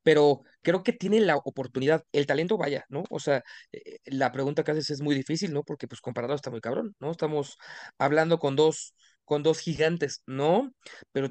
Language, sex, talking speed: Spanish, male, 195 wpm